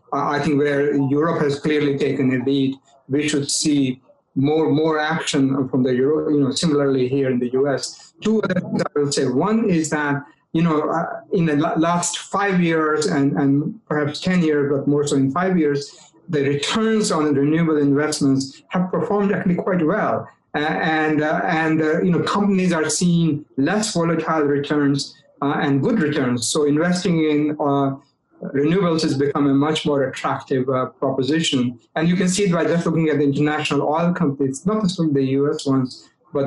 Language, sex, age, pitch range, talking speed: English, male, 50-69, 140-165 Hz, 190 wpm